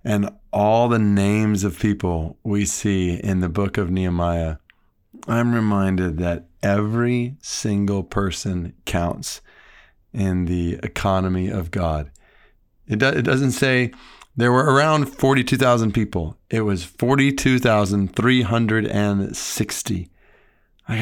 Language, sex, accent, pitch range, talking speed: English, male, American, 95-125 Hz, 105 wpm